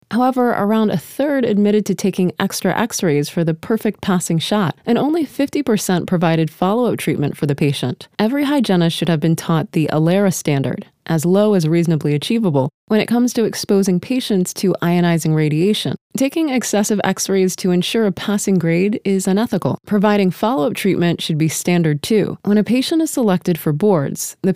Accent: American